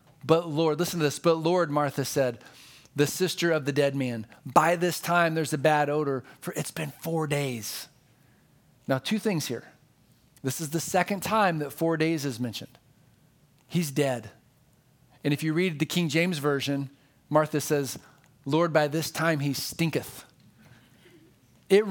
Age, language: 40-59, English